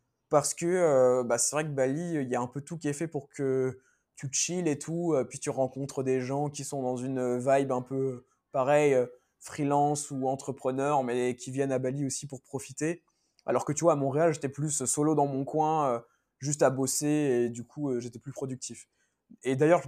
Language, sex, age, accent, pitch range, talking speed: French, male, 20-39, French, 130-155 Hz, 210 wpm